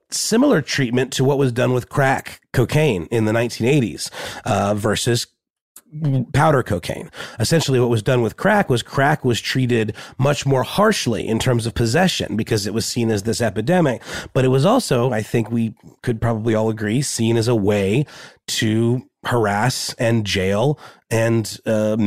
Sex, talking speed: male, 165 wpm